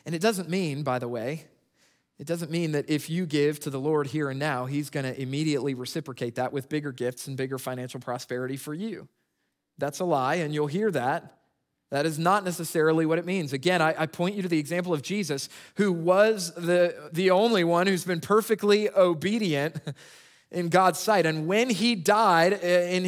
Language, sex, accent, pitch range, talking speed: English, male, American, 130-185 Hz, 195 wpm